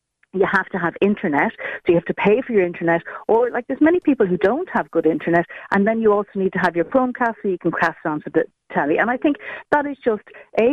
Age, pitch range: 60-79, 170-230 Hz